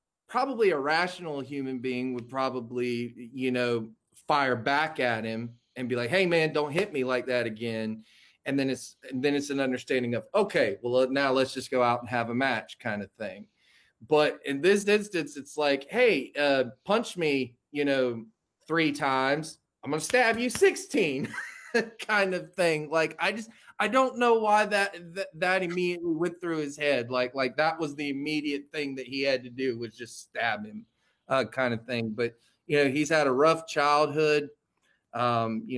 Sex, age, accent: male, 20-39, American